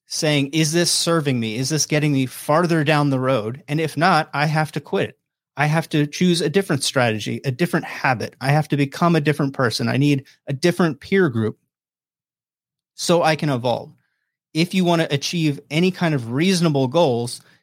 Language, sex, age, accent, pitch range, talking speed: English, male, 30-49, American, 135-165 Hz, 195 wpm